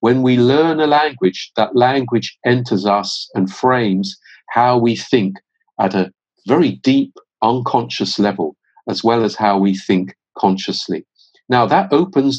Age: 50-69